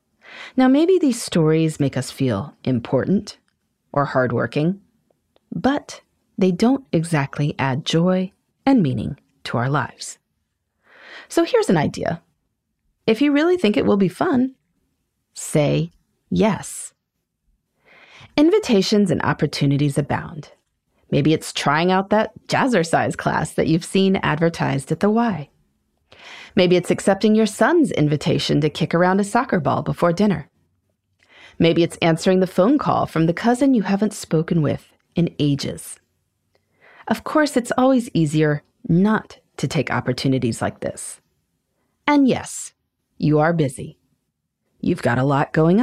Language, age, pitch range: English, 30-49, 145-225 Hz